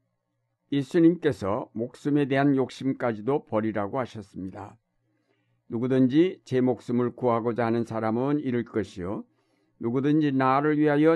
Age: 60-79